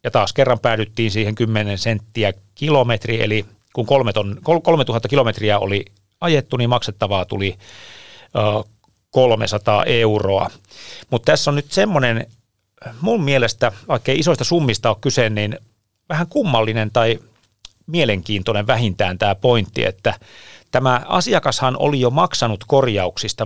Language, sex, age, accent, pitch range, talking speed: Finnish, male, 30-49, native, 105-130 Hz, 120 wpm